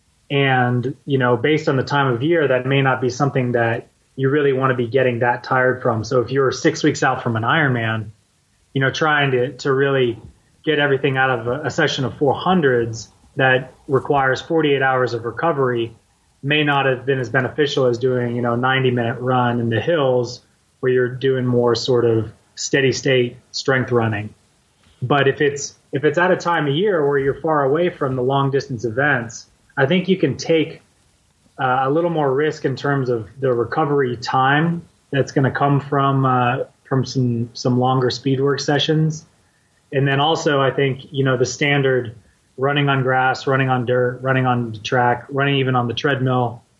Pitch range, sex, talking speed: 120-140 Hz, male, 195 wpm